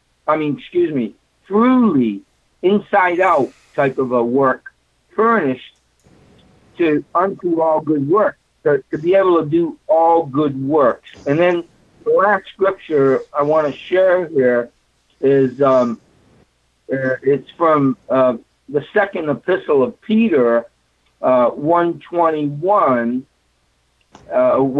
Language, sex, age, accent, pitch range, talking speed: English, male, 60-79, American, 135-190 Hz, 115 wpm